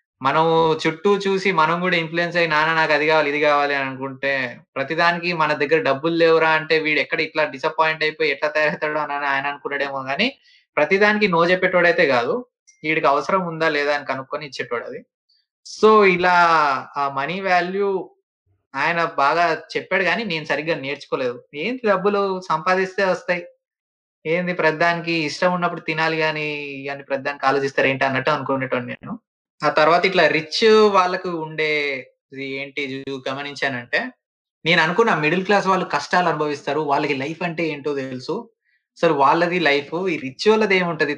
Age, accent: 20-39, native